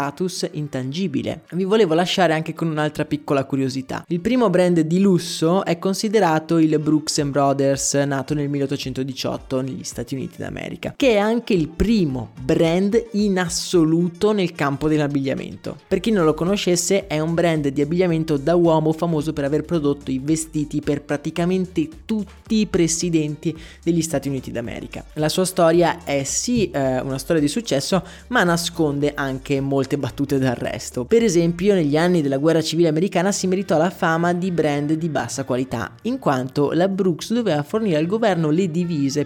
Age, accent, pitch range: 20-39, native, 145-185 Hz